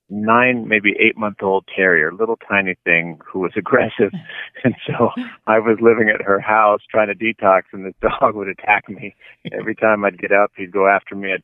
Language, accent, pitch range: English, American, 90-105 Hz